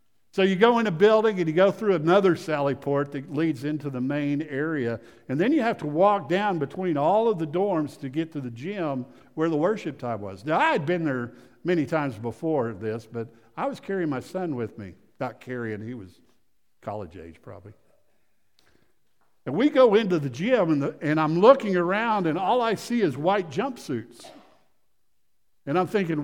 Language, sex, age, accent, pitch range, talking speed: English, male, 60-79, American, 125-175 Hz, 200 wpm